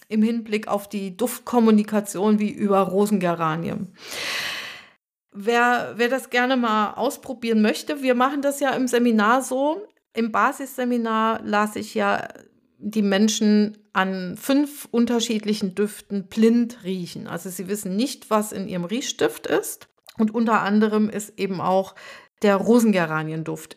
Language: German